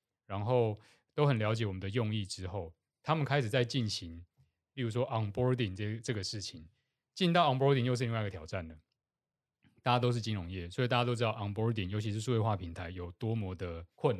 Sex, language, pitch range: male, Chinese, 95-125 Hz